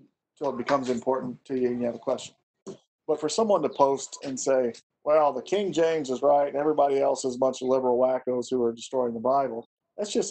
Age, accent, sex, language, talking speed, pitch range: 40-59, American, male, English, 235 wpm, 125-145 Hz